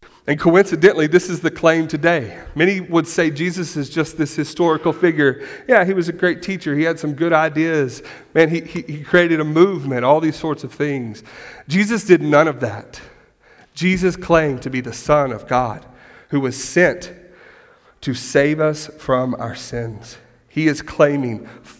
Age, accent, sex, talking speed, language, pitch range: 40-59, American, male, 175 wpm, English, 120-160 Hz